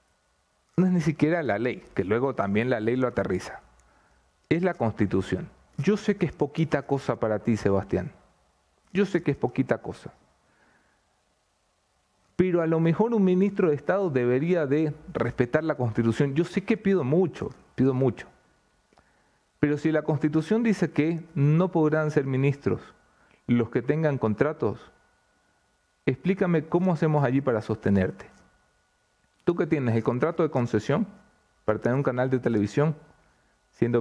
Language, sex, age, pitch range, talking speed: English, male, 40-59, 110-170 Hz, 150 wpm